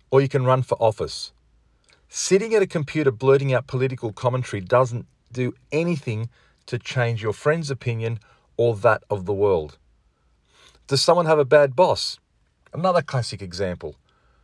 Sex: male